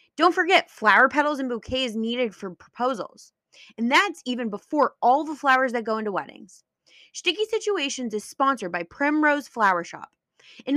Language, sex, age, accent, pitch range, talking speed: English, female, 20-39, American, 210-275 Hz, 160 wpm